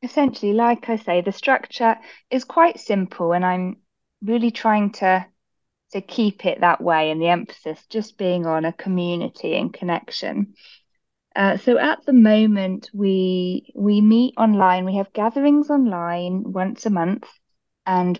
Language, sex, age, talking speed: English, female, 20-39, 150 wpm